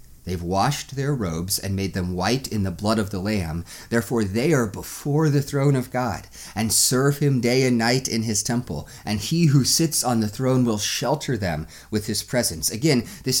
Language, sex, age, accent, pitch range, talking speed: English, male, 30-49, American, 100-140 Hz, 205 wpm